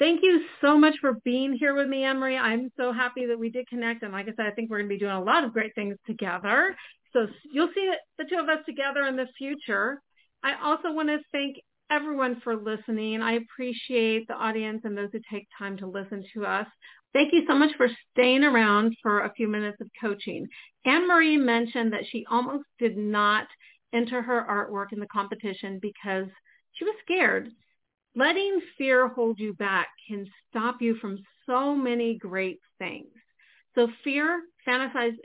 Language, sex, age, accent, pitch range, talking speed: English, female, 40-59, American, 210-280 Hz, 190 wpm